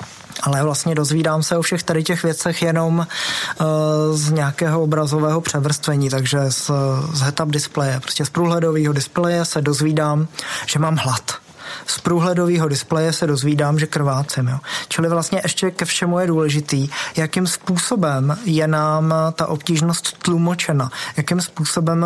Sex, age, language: male, 20-39, Czech